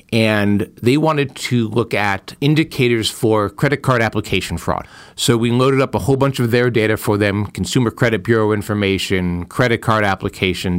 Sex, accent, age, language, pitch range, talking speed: male, American, 50-69, English, 105-135 Hz, 170 wpm